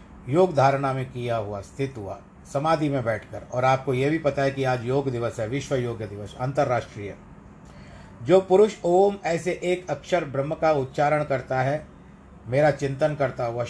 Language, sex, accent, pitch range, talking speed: Hindi, male, native, 115-155 Hz, 175 wpm